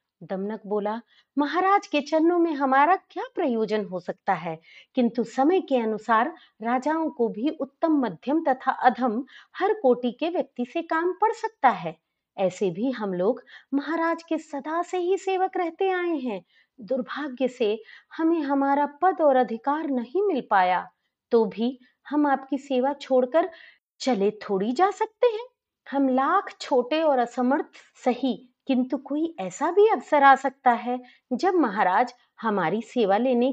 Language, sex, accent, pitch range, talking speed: Hindi, female, native, 195-290 Hz, 150 wpm